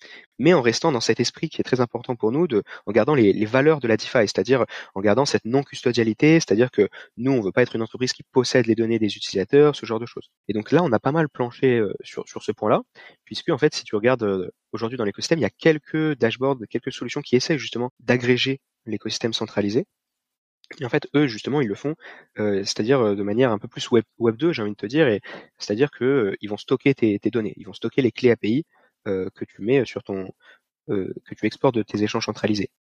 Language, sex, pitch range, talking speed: French, male, 105-140 Hz, 235 wpm